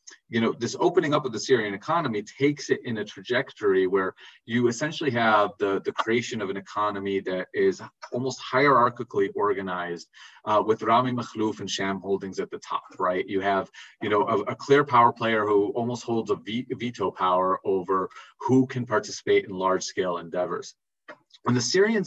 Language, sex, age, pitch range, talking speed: English, male, 30-49, 100-135 Hz, 180 wpm